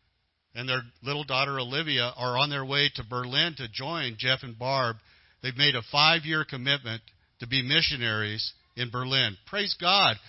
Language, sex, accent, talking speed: English, male, American, 165 wpm